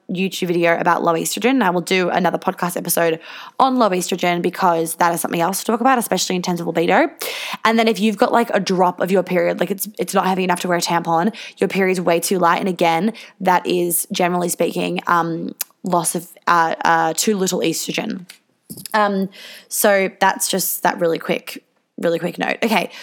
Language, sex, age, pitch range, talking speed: English, female, 20-39, 175-215 Hz, 205 wpm